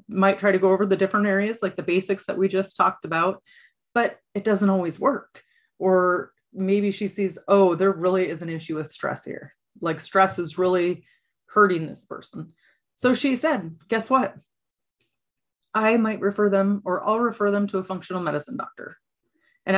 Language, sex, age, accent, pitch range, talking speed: English, female, 30-49, American, 180-215 Hz, 180 wpm